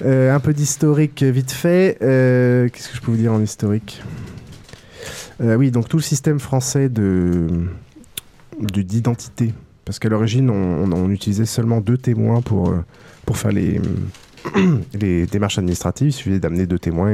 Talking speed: 165 wpm